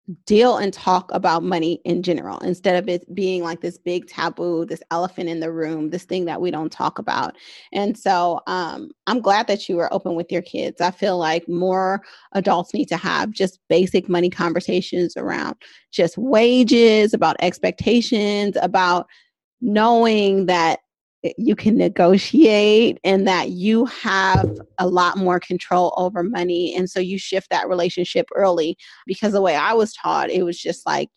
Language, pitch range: English, 175-205 Hz